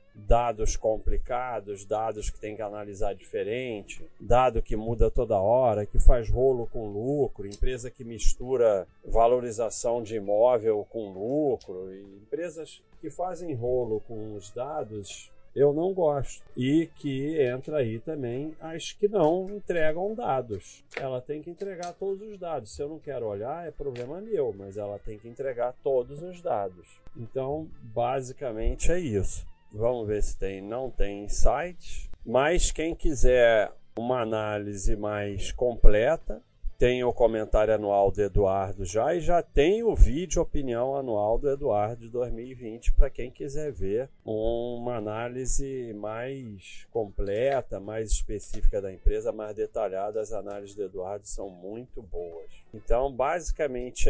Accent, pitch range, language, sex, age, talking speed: Brazilian, 105-145 Hz, Portuguese, male, 40-59, 140 wpm